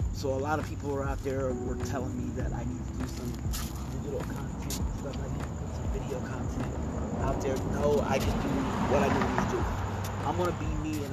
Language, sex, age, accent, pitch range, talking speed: English, male, 30-49, American, 90-135 Hz, 245 wpm